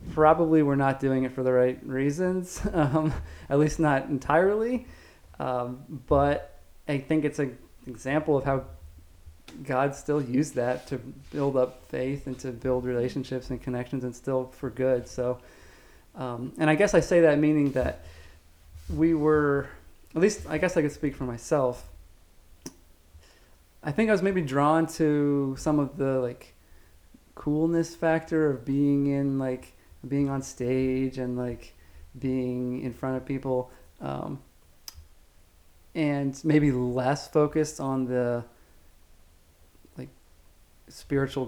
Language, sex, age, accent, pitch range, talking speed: English, male, 20-39, American, 120-140 Hz, 140 wpm